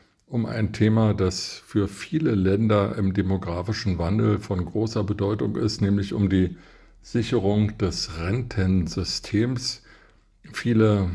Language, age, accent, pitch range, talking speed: German, 50-69, German, 90-110 Hz, 115 wpm